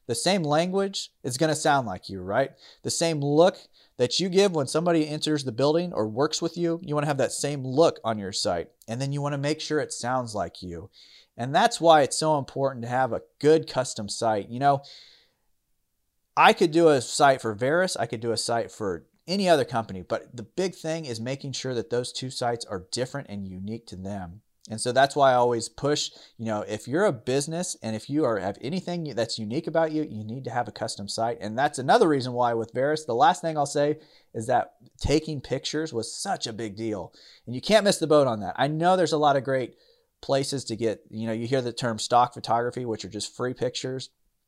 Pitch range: 115-155 Hz